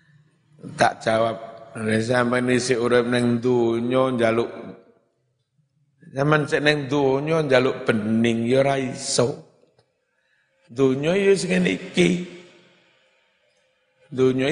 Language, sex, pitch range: Indonesian, male, 125-160 Hz